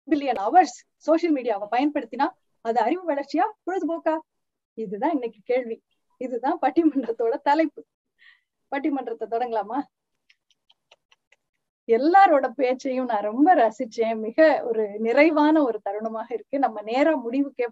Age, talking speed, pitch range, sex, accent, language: 20-39, 65 wpm, 230-335 Hz, female, native, Tamil